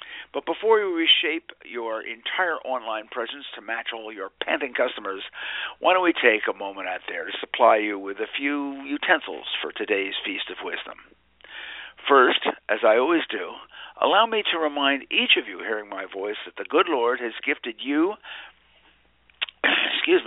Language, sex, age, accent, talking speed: English, male, 60-79, American, 170 wpm